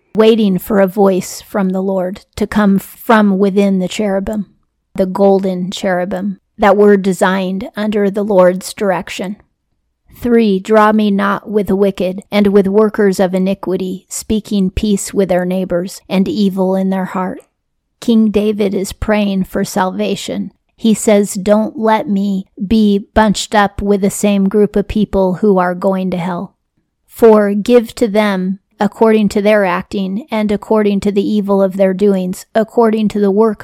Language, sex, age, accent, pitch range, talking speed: English, female, 40-59, American, 190-215 Hz, 160 wpm